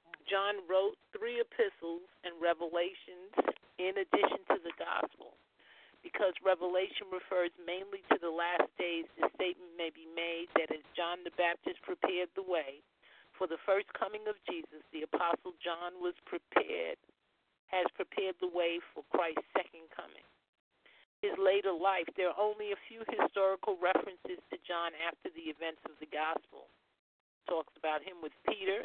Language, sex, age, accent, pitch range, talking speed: English, male, 50-69, American, 170-210 Hz, 155 wpm